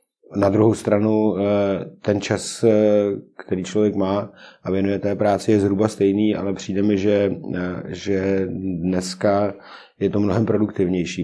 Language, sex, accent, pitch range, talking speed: Czech, male, native, 95-105 Hz, 135 wpm